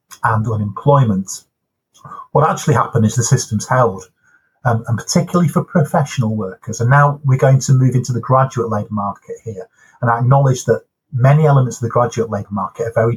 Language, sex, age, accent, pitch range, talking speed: English, male, 30-49, British, 110-140 Hz, 180 wpm